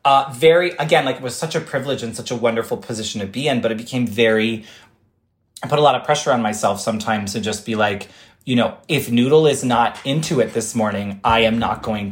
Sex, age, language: male, 30-49, English